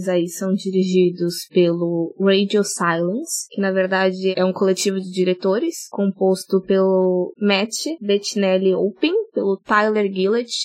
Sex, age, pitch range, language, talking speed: female, 20-39, 185-215 Hz, Portuguese, 125 wpm